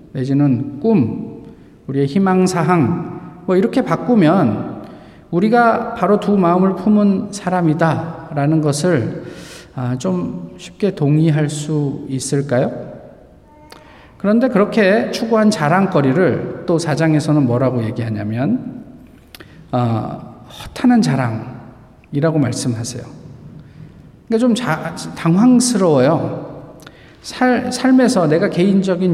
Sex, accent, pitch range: male, native, 135-200 Hz